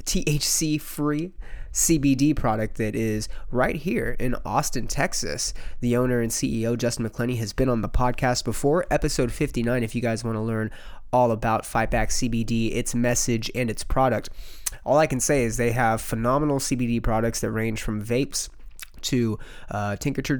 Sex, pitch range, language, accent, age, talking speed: male, 115-130 Hz, English, American, 30-49, 170 wpm